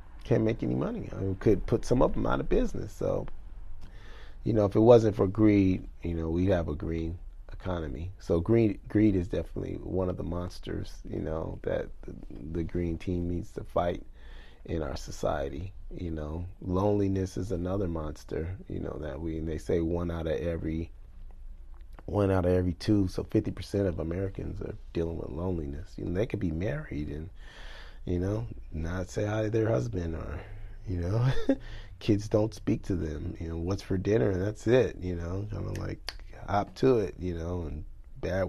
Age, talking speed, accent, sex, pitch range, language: 30-49, 200 wpm, American, male, 85-100 Hz, English